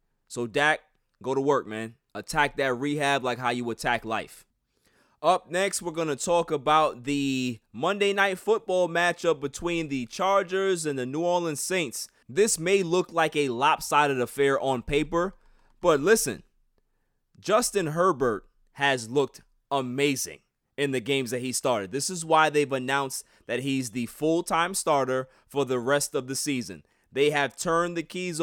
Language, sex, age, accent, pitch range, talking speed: English, male, 20-39, American, 130-165 Hz, 165 wpm